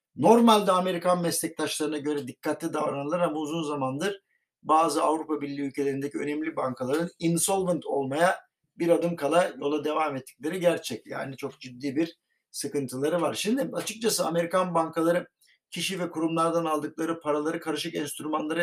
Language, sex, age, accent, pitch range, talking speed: Turkish, male, 50-69, native, 150-180 Hz, 130 wpm